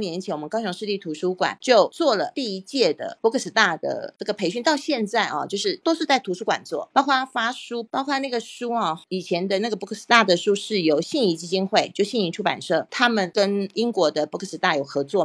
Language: Chinese